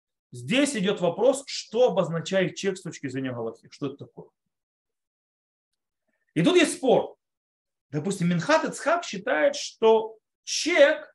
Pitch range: 165-270 Hz